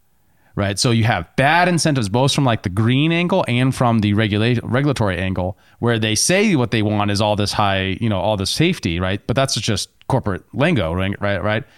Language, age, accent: English, 30-49, American